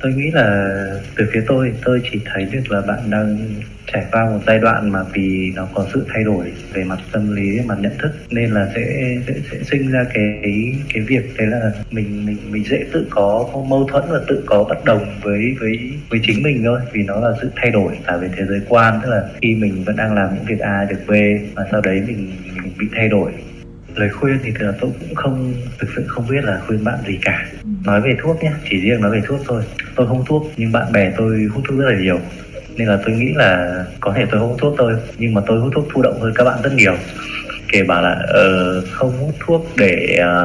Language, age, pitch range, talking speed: Vietnamese, 20-39, 100-125 Hz, 240 wpm